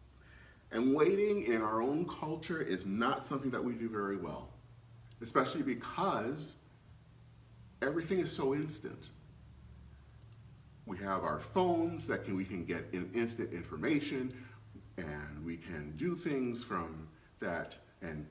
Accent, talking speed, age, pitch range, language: American, 125 wpm, 40-59, 105-150 Hz, English